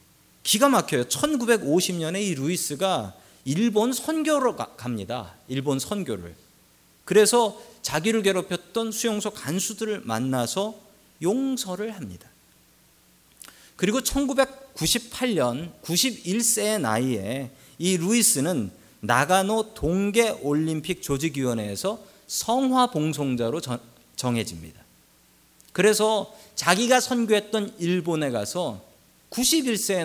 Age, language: 40-59, Korean